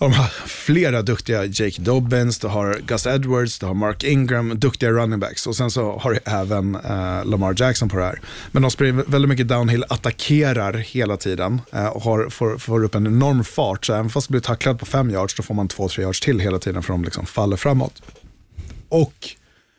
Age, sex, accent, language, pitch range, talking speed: 30-49, male, native, Swedish, 100-130 Hz, 215 wpm